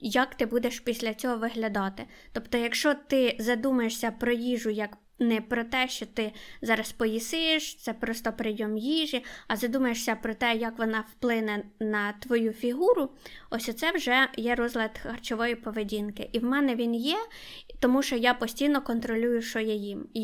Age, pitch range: 20-39, 230-270 Hz